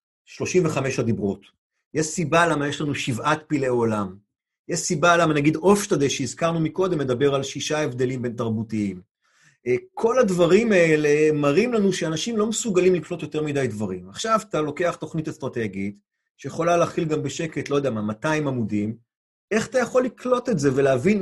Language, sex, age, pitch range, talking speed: Hebrew, male, 30-49, 130-180 Hz, 160 wpm